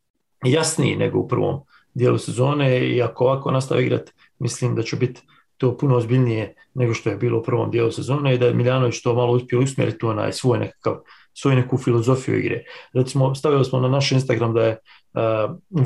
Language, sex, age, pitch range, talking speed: English, male, 40-59, 120-140 Hz, 190 wpm